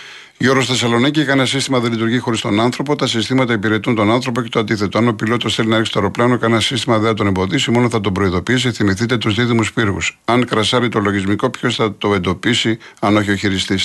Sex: male